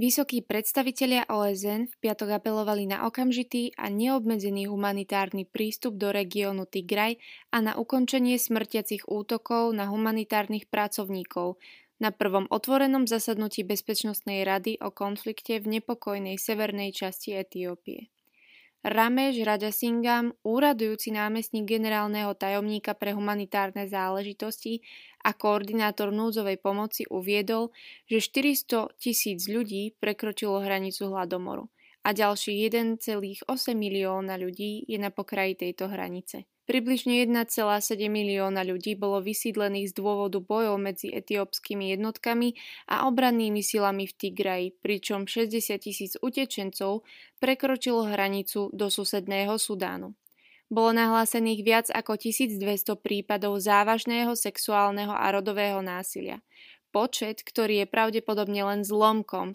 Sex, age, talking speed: female, 20-39, 110 wpm